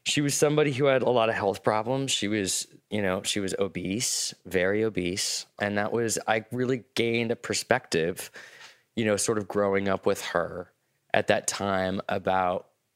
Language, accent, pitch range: English, American, 95-115 Hz